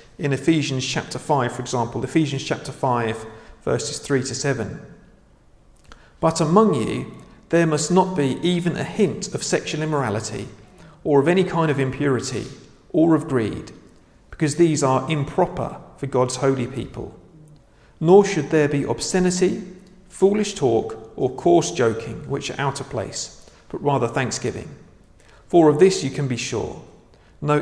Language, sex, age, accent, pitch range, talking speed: English, male, 40-59, British, 120-160 Hz, 150 wpm